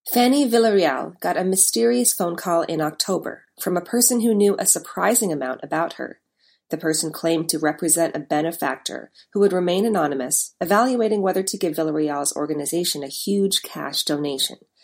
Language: English